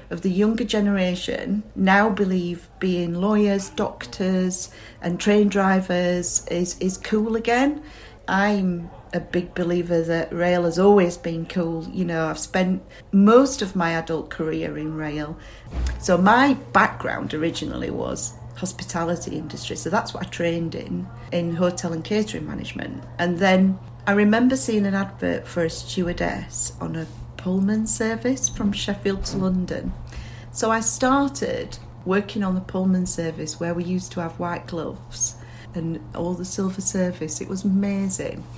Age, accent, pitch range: 40-59, British, 165-200 Hz